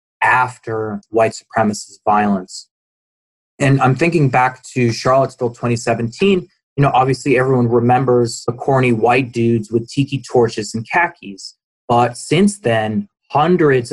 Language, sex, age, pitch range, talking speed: English, male, 20-39, 110-130 Hz, 125 wpm